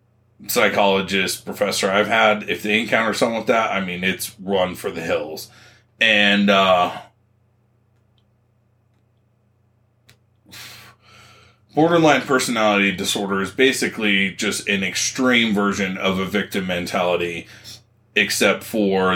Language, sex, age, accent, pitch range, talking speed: English, male, 30-49, American, 95-110 Hz, 105 wpm